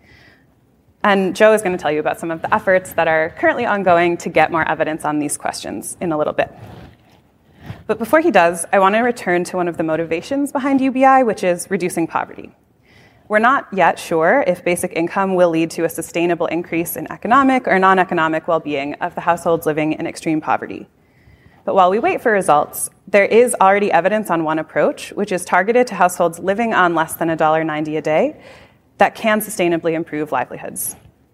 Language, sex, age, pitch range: English, female, 20-39, 165-215 Hz